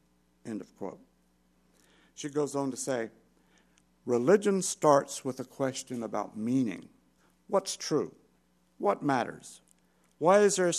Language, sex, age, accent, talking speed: English, male, 60-79, American, 120 wpm